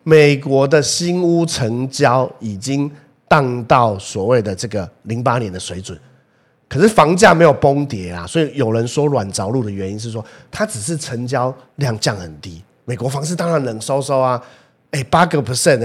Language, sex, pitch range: Chinese, male, 110-155 Hz